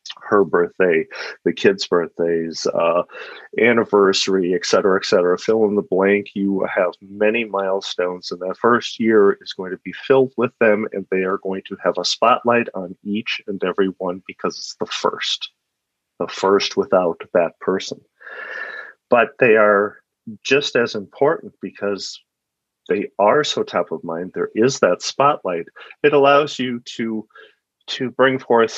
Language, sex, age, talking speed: English, male, 40-59, 160 wpm